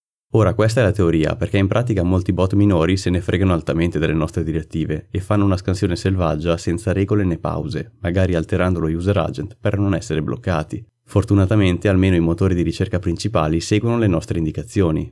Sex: male